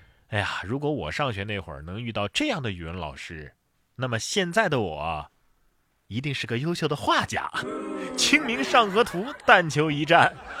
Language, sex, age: Chinese, male, 20-39